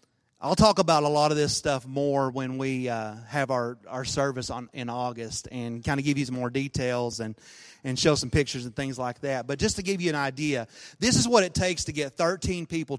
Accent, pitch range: American, 125-155 Hz